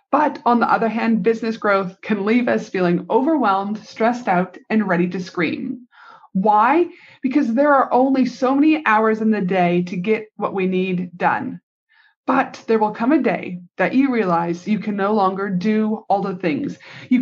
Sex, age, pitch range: female, 30-49, 190-245 Hz